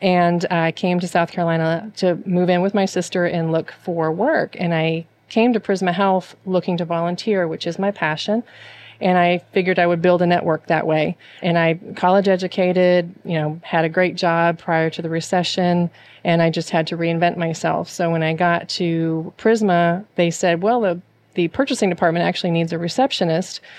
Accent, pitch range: American, 165-180 Hz